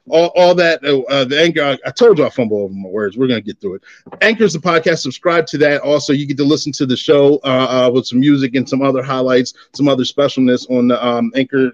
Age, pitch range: 30-49, 135-170 Hz